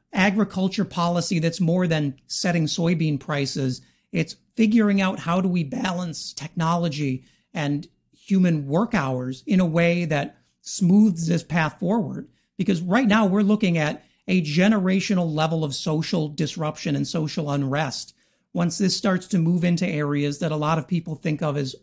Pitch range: 155-190 Hz